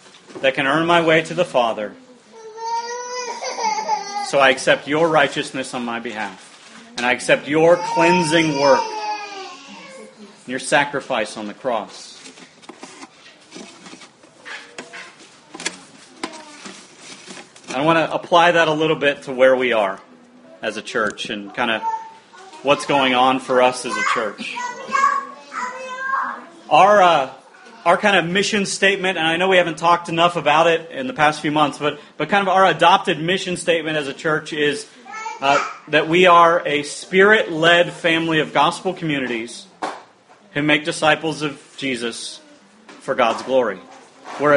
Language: English